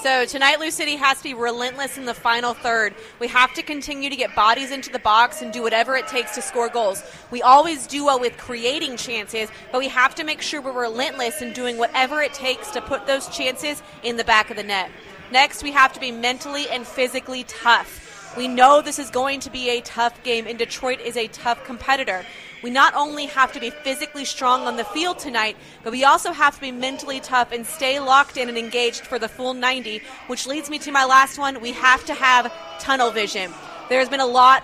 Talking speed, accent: 230 wpm, American